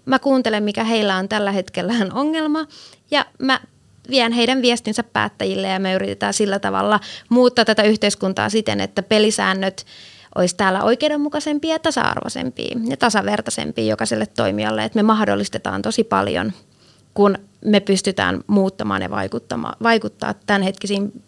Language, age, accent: Finnish, 20-39, native